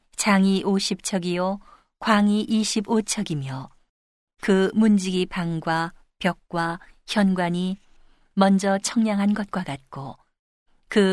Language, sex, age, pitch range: Korean, female, 40-59, 175-205 Hz